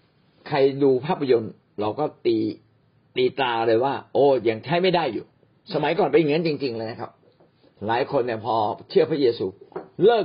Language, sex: Thai, male